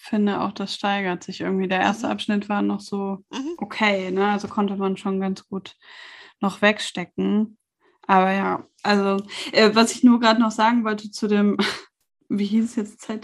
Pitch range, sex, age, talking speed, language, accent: 190-225 Hz, female, 20-39, 175 wpm, German, German